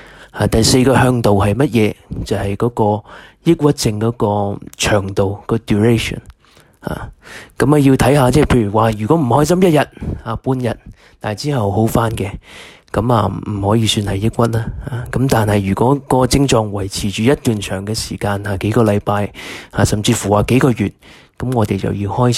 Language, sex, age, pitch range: Chinese, male, 20-39, 100-125 Hz